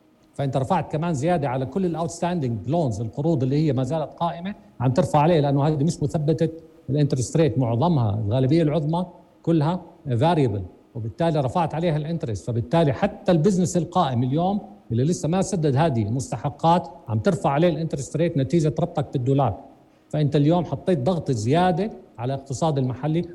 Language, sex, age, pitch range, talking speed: Arabic, male, 50-69, 130-170 Hz, 150 wpm